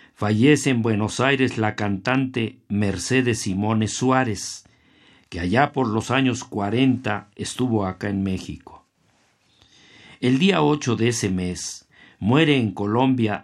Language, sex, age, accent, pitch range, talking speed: Spanish, male, 50-69, Mexican, 100-130 Hz, 125 wpm